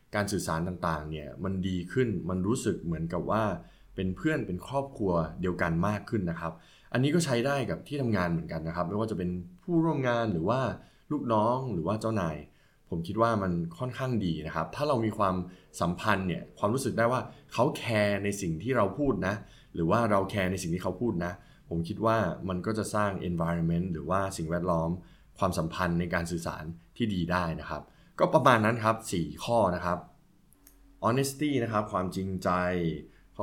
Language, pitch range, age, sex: Thai, 85-110 Hz, 20-39, male